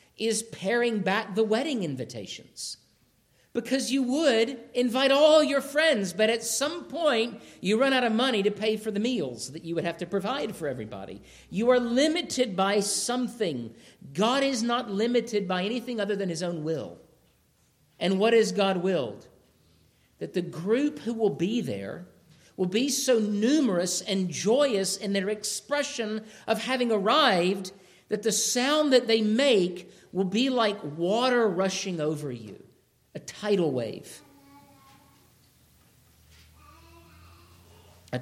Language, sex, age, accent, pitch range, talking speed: English, male, 50-69, American, 160-225 Hz, 145 wpm